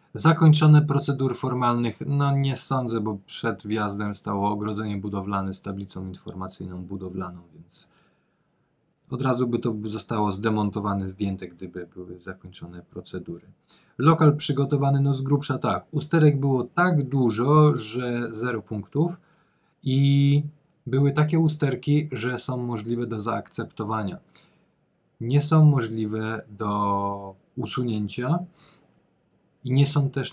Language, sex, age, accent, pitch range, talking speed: Polish, male, 20-39, native, 110-140 Hz, 115 wpm